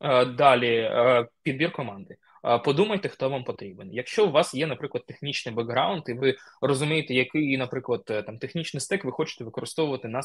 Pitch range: 115-155 Hz